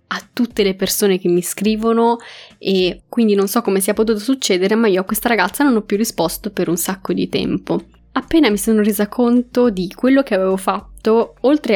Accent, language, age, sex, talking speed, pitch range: native, Italian, 20-39, female, 205 wpm, 190-225 Hz